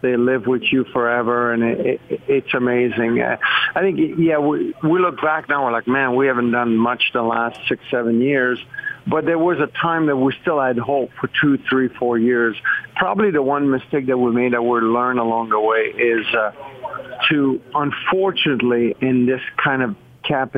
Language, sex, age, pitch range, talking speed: English, male, 50-69, 120-145 Hz, 190 wpm